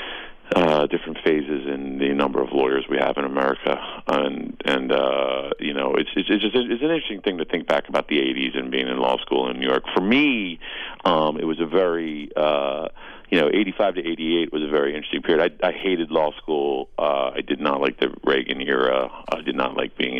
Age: 40-59